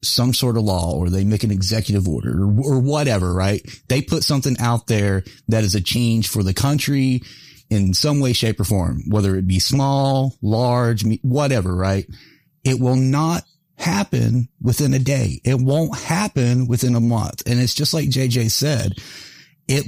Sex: male